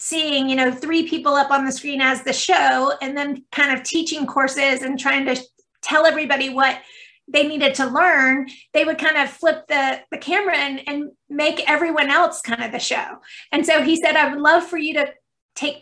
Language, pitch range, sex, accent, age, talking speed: English, 270-310 Hz, female, American, 30-49, 215 wpm